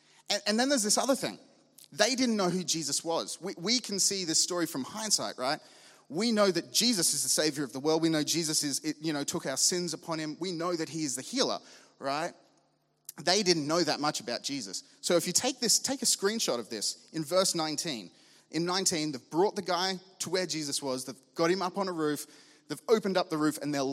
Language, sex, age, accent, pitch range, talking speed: English, male, 30-49, Australian, 150-195 Hz, 235 wpm